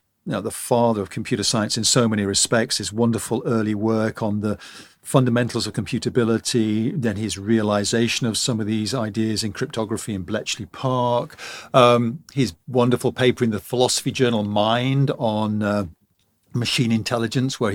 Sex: male